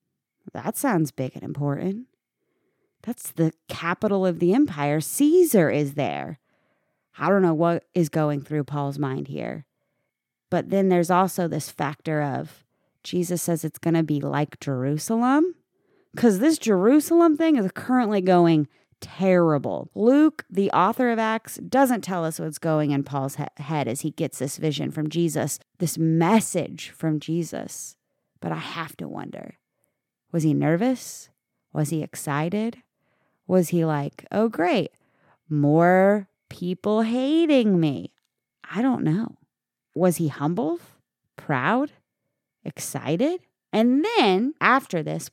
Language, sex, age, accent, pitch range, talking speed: English, female, 30-49, American, 155-240 Hz, 135 wpm